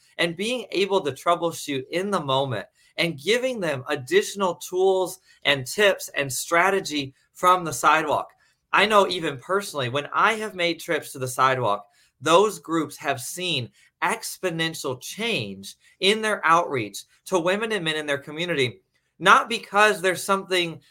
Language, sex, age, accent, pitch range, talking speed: English, male, 30-49, American, 145-195 Hz, 150 wpm